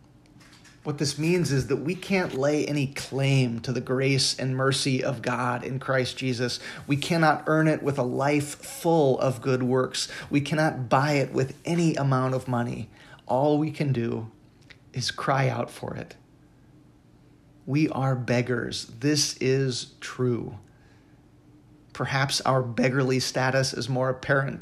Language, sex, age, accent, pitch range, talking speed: English, male, 30-49, American, 125-145 Hz, 150 wpm